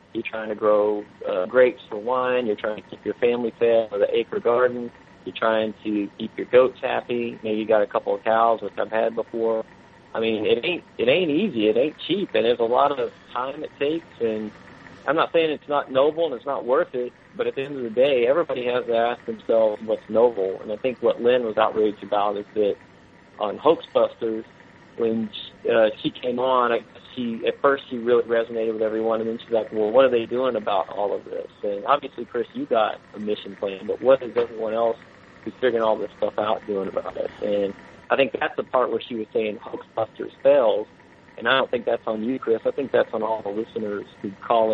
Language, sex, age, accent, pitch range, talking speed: English, male, 40-59, American, 110-140 Hz, 230 wpm